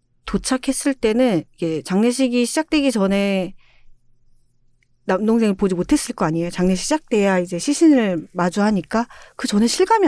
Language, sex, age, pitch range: Korean, female, 40-59, 180-260 Hz